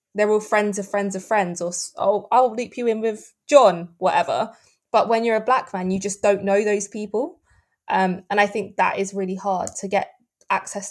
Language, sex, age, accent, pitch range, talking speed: English, female, 20-39, British, 185-205 Hz, 210 wpm